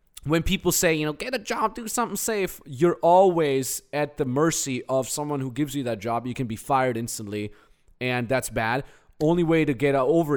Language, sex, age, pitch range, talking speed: English, male, 20-39, 120-150 Hz, 210 wpm